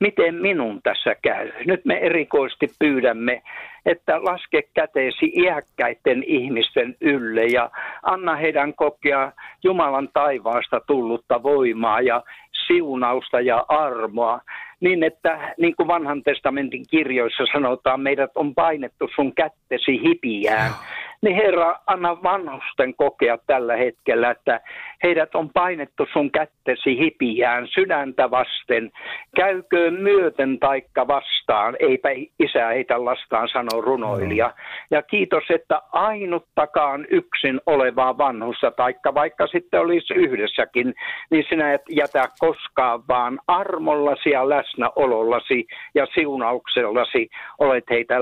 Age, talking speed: 60-79, 115 wpm